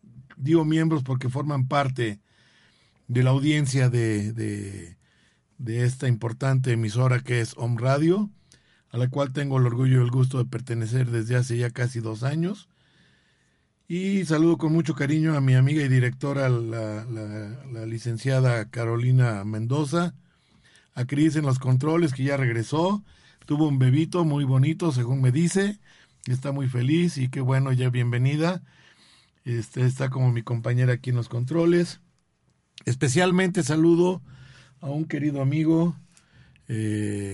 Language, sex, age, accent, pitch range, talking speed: Spanish, male, 50-69, Mexican, 120-140 Hz, 140 wpm